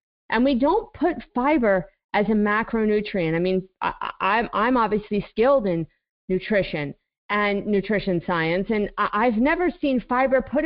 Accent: American